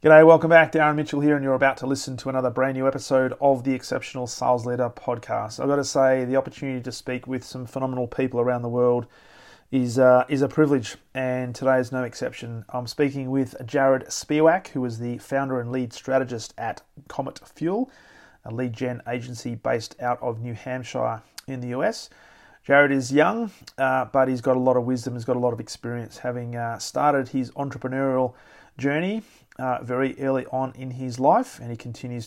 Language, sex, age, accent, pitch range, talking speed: English, male, 30-49, Australian, 120-135 Hz, 200 wpm